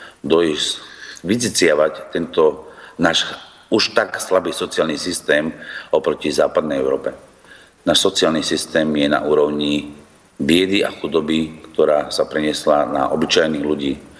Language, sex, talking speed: Slovak, male, 115 wpm